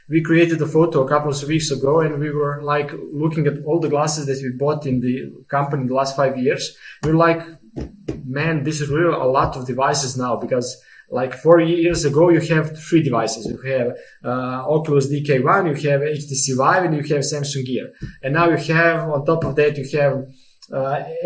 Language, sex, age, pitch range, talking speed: English, male, 20-39, 140-160 Hz, 210 wpm